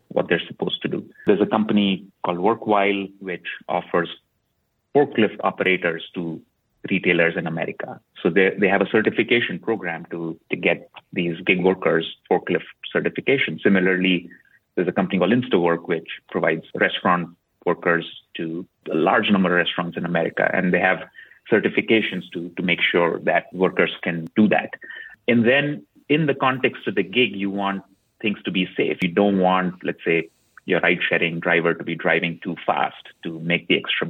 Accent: Indian